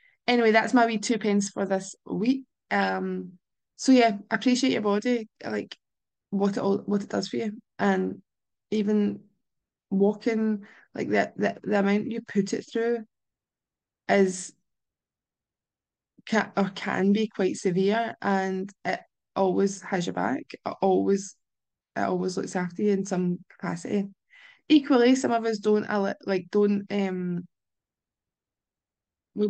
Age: 20-39